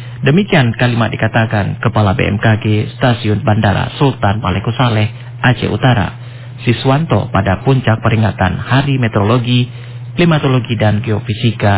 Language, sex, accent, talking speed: English, male, Indonesian, 100 wpm